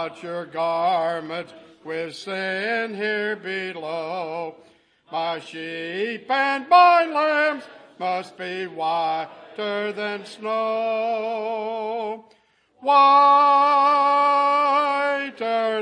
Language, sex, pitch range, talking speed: English, male, 165-255 Hz, 75 wpm